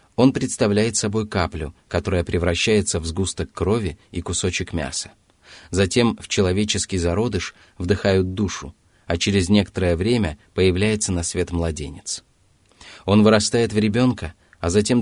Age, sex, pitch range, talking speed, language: 30-49, male, 85-105 Hz, 130 wpm, Russian